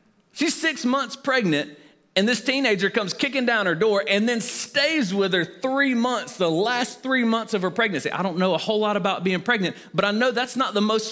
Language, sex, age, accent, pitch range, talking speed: English, male, 40-59, American, 170-240 Hz, 225 wpm